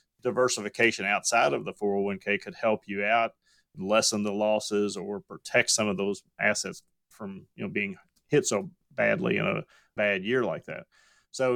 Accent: American